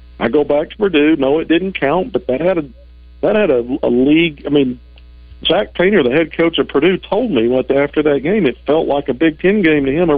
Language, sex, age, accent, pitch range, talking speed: English, male, 50-69, American, 105-140 Hz, 260 wpm